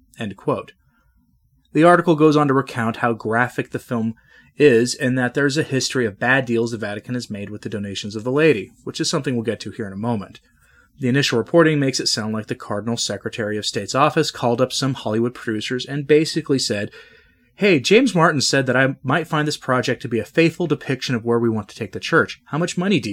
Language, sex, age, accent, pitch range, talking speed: English, male, 30-49, American, 110-140 Hz, 230 wpm